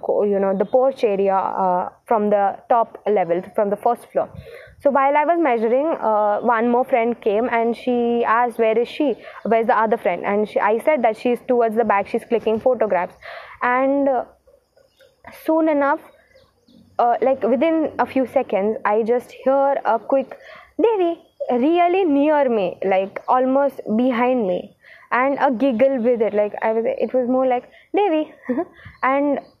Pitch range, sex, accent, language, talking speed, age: 225-275 Hz, female, native, Hindi, 175 wpm, 20-39